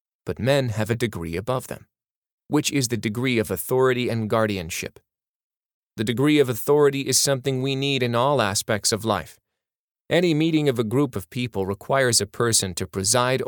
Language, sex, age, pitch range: English, male, 30-49, 105-140 Hz